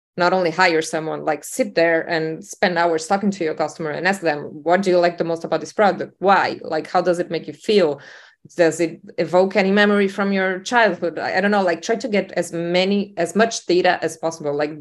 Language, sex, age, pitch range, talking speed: English, female, 20-39, 155-180 Hz, 235 wpm